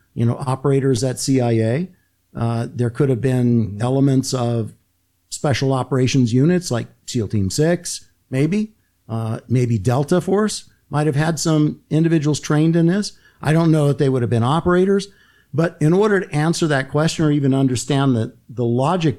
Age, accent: 50-69, American